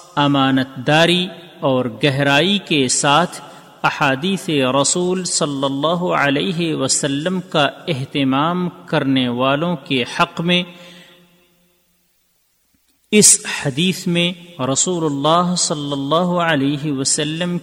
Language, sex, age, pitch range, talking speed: Urdu, male, 40-59, 140-175 Hz, 95 wpm